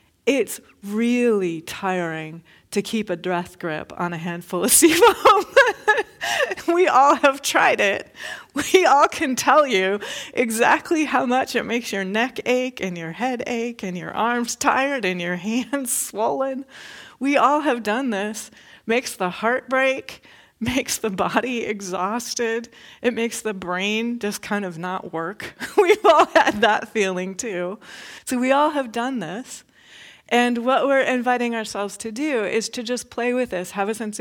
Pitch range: 190-255 Hz